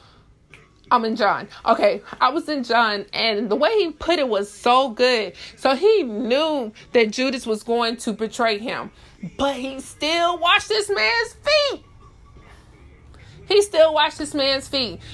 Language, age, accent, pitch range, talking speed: English, 20-39, American, 215-285 Hz, 160 wpm